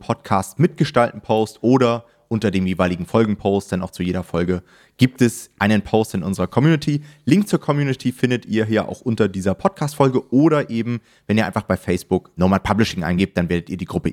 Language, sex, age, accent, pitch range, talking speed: German, male, 30-49, German, 95-125 Hz, 185 wpm